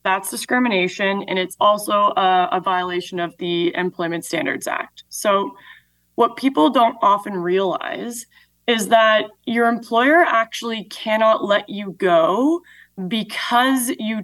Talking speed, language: 125 wpm, English